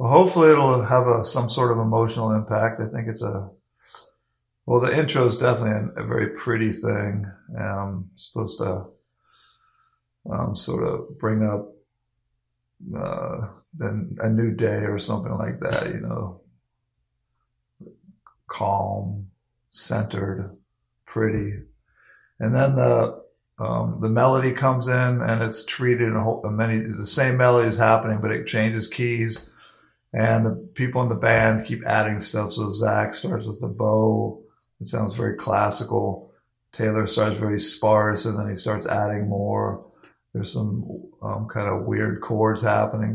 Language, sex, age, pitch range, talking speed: English, male, 50-69, 105-120 Hz, 145 wpm